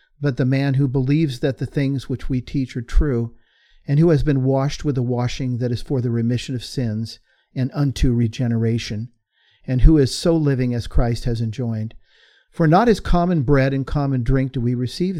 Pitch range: 120-145 Hz